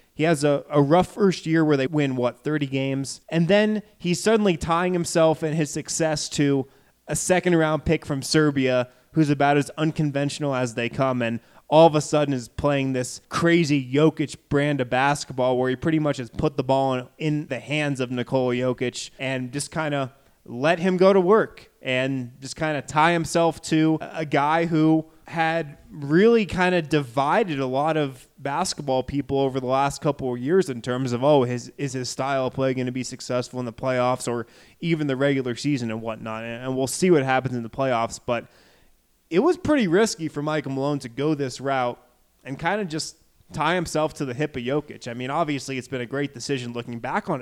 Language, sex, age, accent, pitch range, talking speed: English, male, 20-39, American, 130-160 Hz, 210 wpm